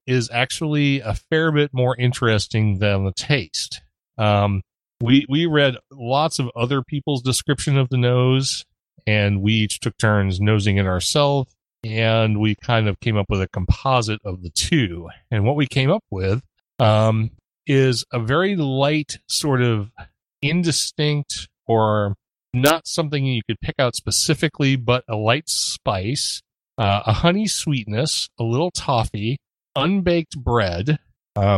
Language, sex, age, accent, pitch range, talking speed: English, male, 40-59, American, 105-140 Hz, 150 wpm